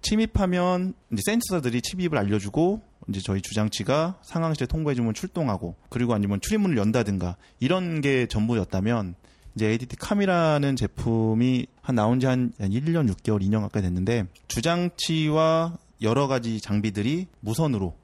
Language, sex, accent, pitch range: Korean, male, native, 105-150 Hz